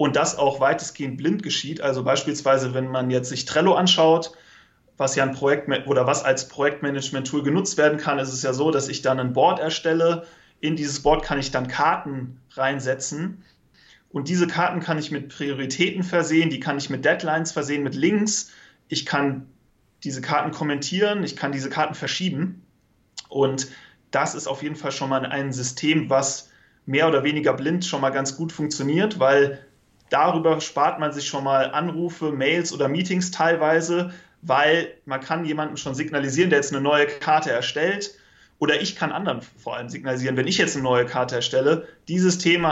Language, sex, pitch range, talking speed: German, male, 135-170 Hz, 180 wpm